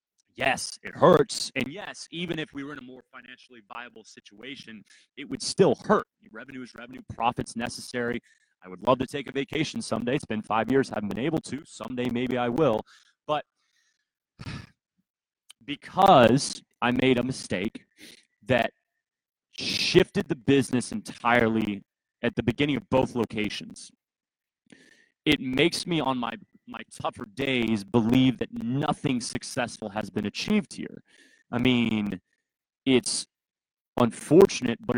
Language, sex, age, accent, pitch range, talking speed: English, male, 30-49, American, 110-135 Hz, 140 wpm